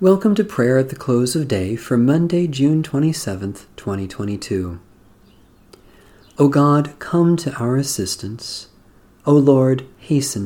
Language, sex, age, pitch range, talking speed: English, male, 40-59, 100-140 Hz, 125 wpm